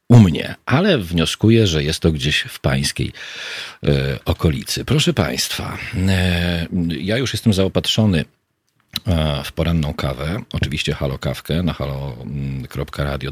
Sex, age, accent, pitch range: male, 40-59, native, 70-90 Hz